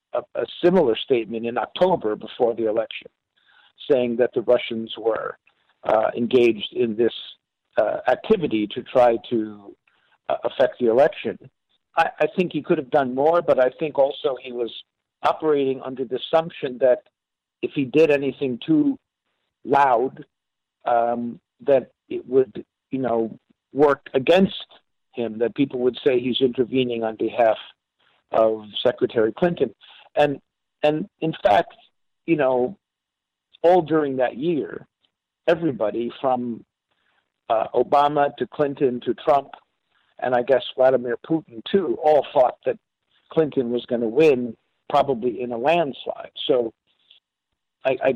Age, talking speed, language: 60-79, 135 wpm, English